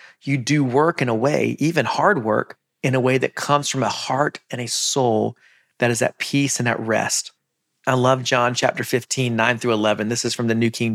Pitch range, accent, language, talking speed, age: 120-145 Hz, American, English, 225 wpm, 40-59